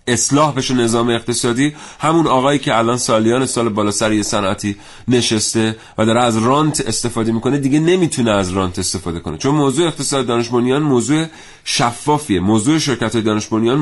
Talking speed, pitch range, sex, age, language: 150 wpm, 105-140 Hz, male, 30-49, Persian